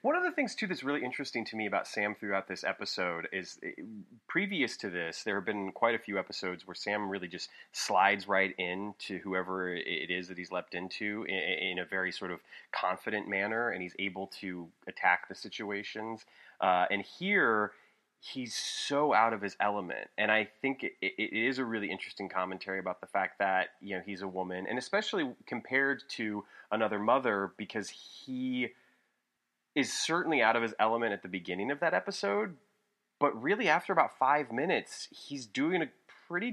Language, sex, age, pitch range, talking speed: English, male, 30-49, 95-120 Hz, 185 wpm